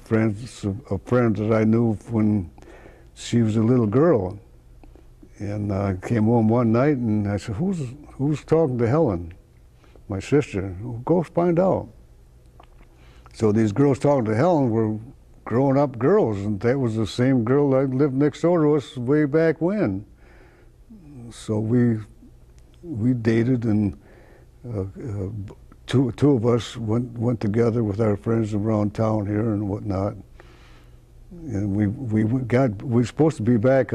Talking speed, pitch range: 155 wpm, 100-130 Hz